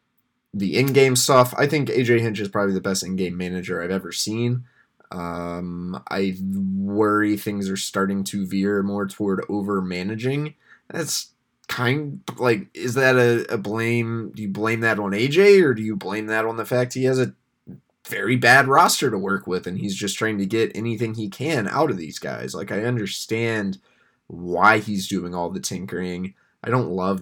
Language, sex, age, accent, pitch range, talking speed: English, male, 20-39, American, 95-110 Hz, 185 wpm